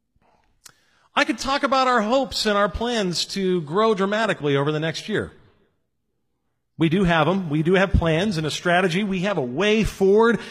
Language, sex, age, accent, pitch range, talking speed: English, male, 40-59, American, 170-220 Hz, 185 wpm